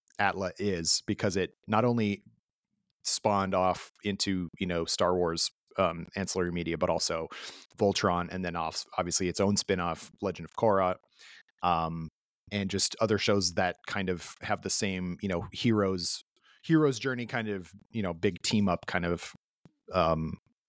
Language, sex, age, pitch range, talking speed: English, male, 30-49, 95-115 Hz, 160 wpm